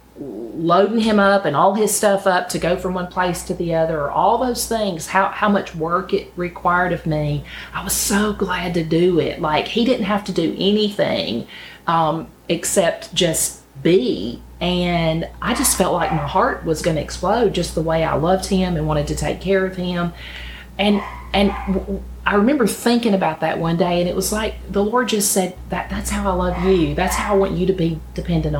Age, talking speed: 40-59, 210 wpm